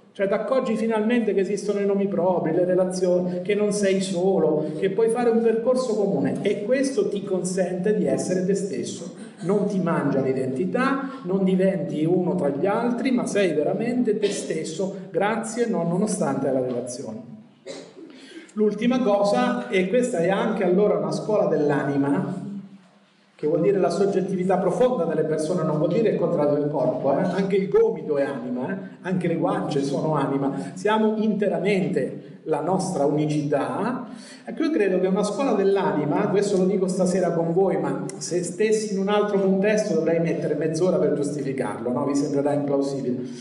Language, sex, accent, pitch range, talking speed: Italian, male, native, 160-210 Hz, 165 wpm